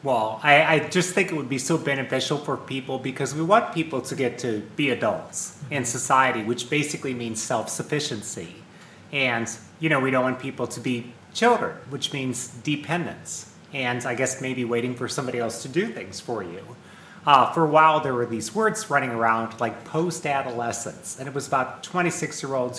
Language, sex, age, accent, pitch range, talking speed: English, male, 30-49, American, 120-160 Hz, 185 wpm